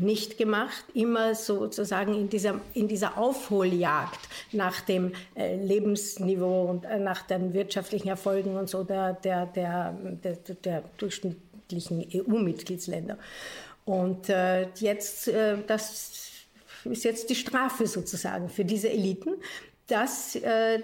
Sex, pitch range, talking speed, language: female, 190-215 Hz, 110 wpm, German